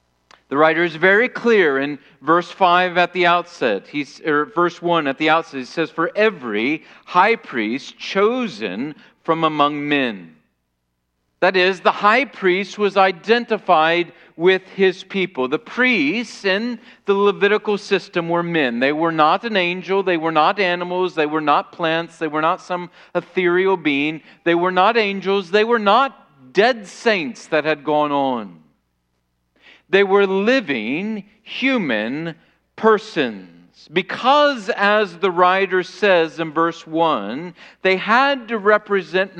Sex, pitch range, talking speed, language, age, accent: male, 145-205 Hz, 145 wpm, English, 40-59, American